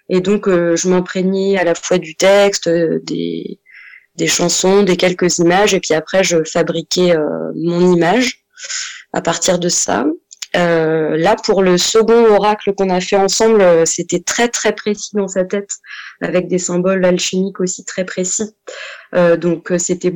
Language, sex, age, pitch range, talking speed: French, female, 20-39, 175-210 Hz, 175 wpm